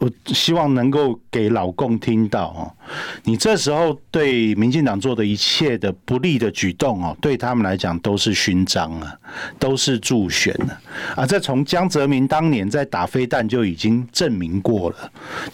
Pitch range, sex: 105-135 Hz, male